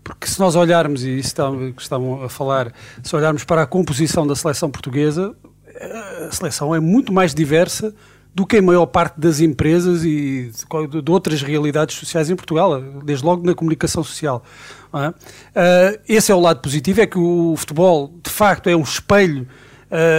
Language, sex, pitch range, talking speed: Portuguese, male, 150-185 Hz, 170 wpm